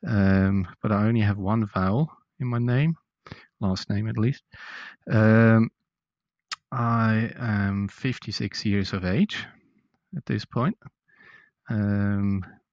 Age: 30-49